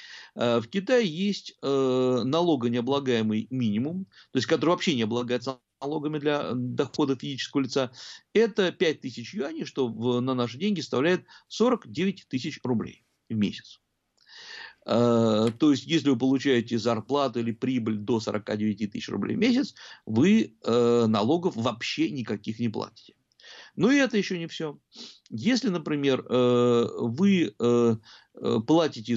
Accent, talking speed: native, 130 wpm